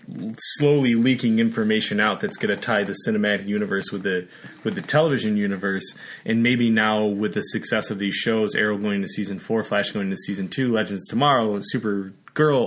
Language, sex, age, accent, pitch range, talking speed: English, male, 20-39, American, 100-125 Hz, 190 wpm